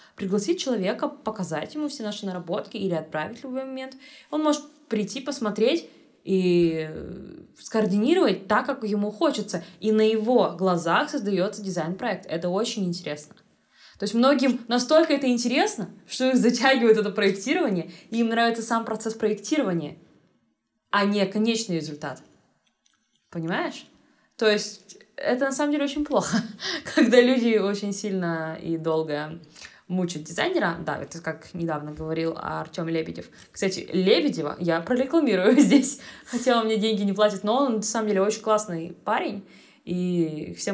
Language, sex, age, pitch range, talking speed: Russian, female, 20-39, 180-245 Hz, 145 wpm